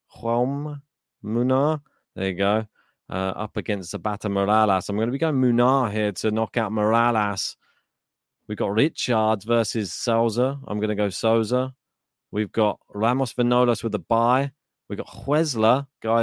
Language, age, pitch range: English, 30-49, 105-135 Hz